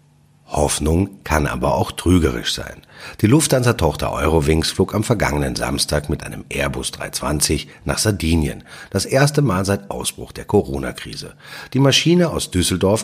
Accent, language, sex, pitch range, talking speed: German, German, male, 75-115 Hz, 140 wpm